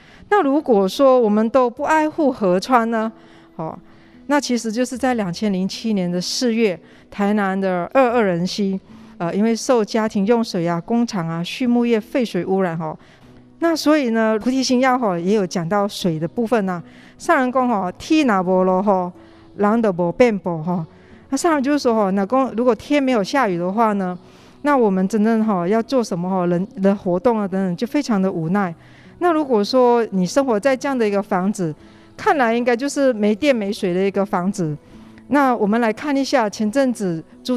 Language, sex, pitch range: Chinese, female, 185-250 Hz